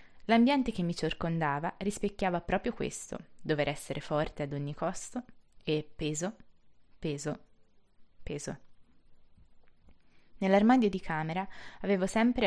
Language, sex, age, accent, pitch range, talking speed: Italian, female, 20-39, native, 155-200 Hz, 105 wpm